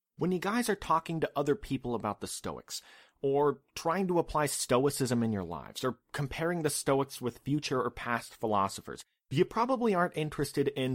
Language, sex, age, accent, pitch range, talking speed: English, male, 30-49, American, 120-160 Hz, 180 wpm